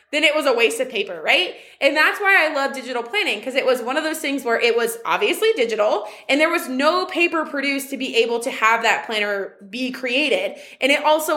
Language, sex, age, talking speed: English, female, 20-39, 240 wpm